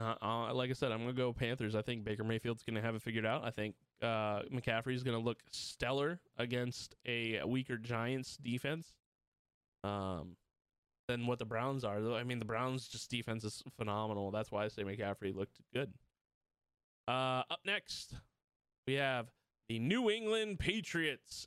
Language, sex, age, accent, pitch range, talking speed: English, male, 20-39, American, 105-140 Hz, 180 wpm